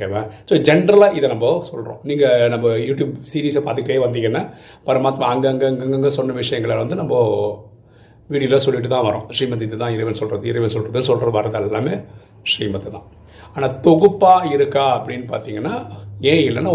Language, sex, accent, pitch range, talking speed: Tamil, male, native, 110-140 Hz, 40 wpm